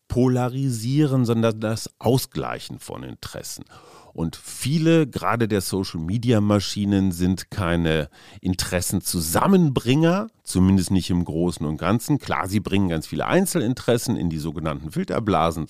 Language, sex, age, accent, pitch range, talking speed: German, male, 40-59, German, 90-120 Hz, 115 wpm